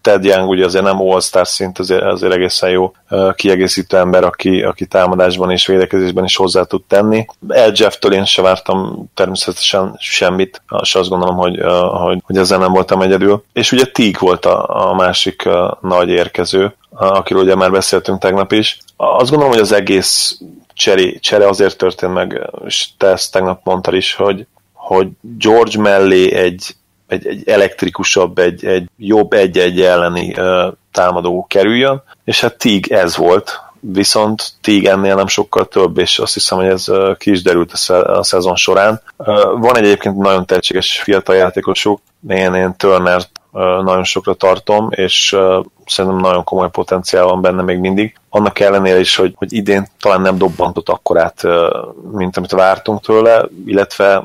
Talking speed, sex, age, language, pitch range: 165 wpm, male, 30-49, Hungarian, 90-100 Hz